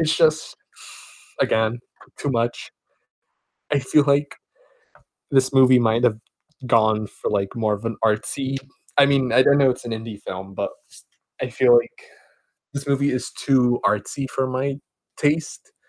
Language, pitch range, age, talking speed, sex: English, 110-140 Hz, 20-39, 150 wpm, male